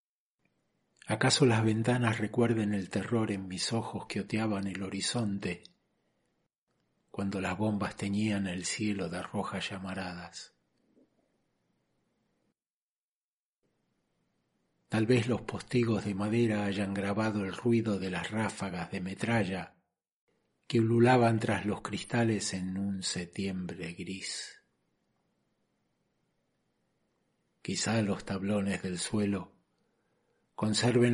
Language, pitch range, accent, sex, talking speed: Spanish, 95-110 Hz, Argentinian, male, 100 wpm